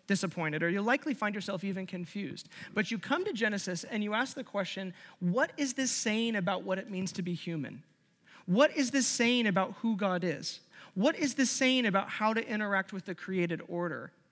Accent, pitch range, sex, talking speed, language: American, 175-225 Hz, male, 205 wpm, English